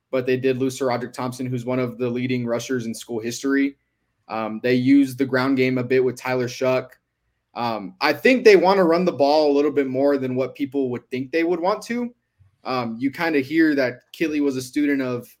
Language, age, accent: English, 20-39, American